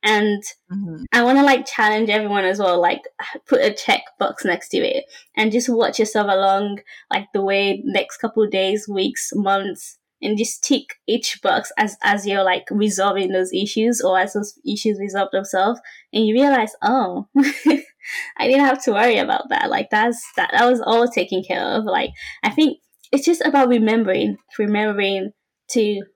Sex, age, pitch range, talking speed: female, 20-39, 195-235 Hz, 175 wpm